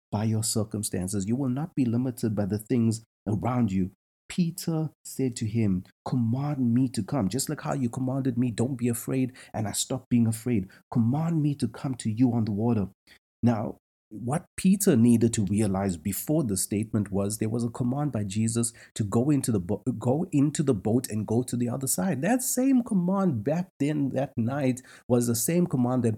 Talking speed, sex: 200 wpm, male